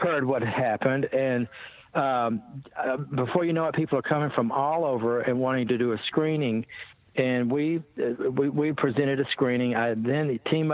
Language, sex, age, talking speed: English, male, 60-79, 185 wpm